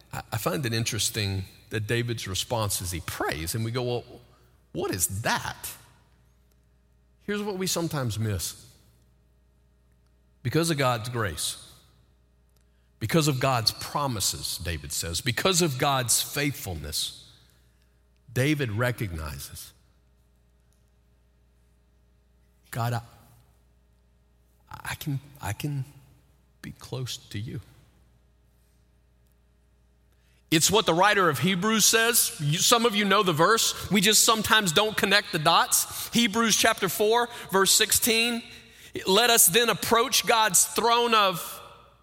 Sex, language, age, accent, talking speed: male, English, 40-59, American, 115 wpm